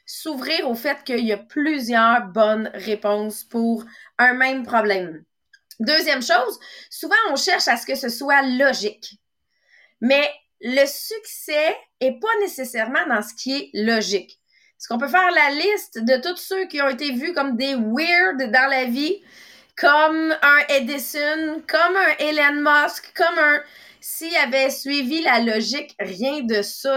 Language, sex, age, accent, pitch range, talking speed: English, female, 30-49, Canadian, 235-315 Hz, 160 wpm